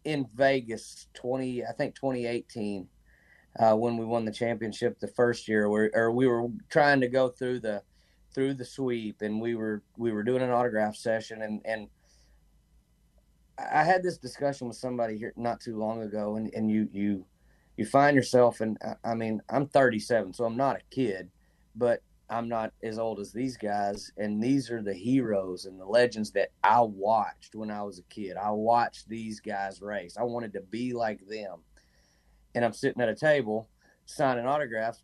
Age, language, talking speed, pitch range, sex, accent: 30-49, English, 185 wpm, 110-125 Hz, male, American